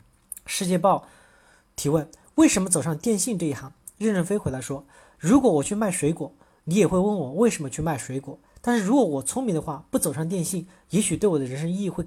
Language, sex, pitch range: Chinese, male, 150-205 Hz